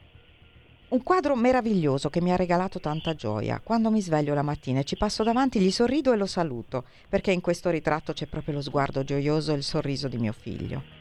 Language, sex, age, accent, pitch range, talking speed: Italian, female, 50-69, native, 140-195 Hz, 205 wpm